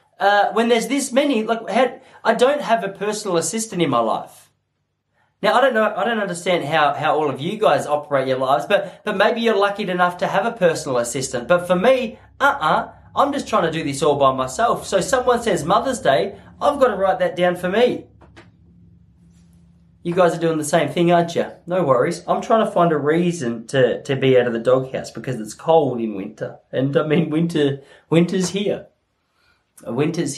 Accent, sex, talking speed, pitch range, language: Australian, male, 205 wpm, 130-215 Hz, English